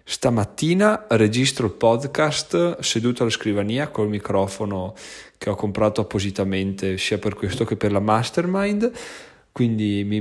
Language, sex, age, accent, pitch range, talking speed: Italian, male, 20-39, native, 105-120 Hz, 130 wpm